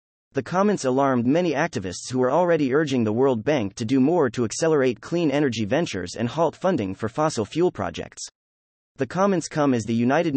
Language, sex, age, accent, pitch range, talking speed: English, male, 30-49, American, 110-155 Hz, 190 wpm